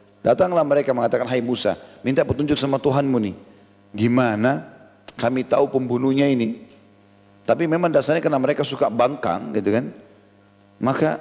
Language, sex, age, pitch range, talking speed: Indonesian, male, 40-59, 100-145 Hz, 135 wpm